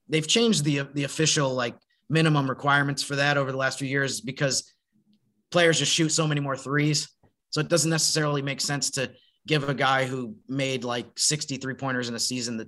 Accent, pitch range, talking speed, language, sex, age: American, 125-150 Hz, 200 wpm, English, male, 30-49